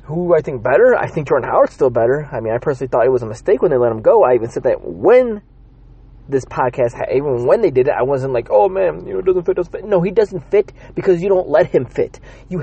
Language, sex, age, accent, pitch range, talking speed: English, male, 30-49, American, 125-200 Hz, 285 wpm